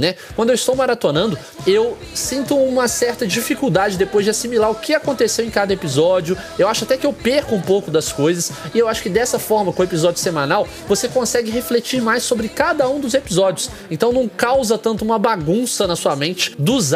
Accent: Brazilian